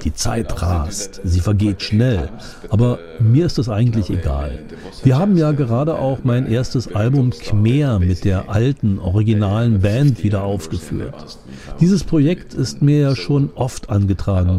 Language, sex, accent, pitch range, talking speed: German, male, German, 100-145 Hz, 150 wpm